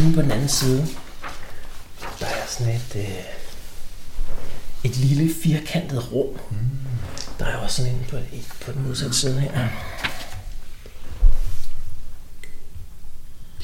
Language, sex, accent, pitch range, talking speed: Danish, male, native, 120-165 Hz, 105 wpm